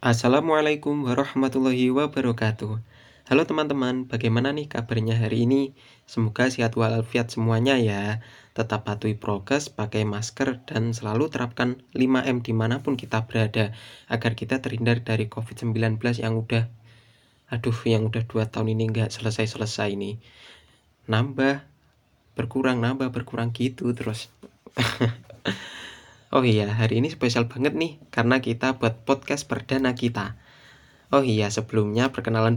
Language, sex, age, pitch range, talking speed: Indonesian, male, 20-39, 110-130 Hz, 120 wpm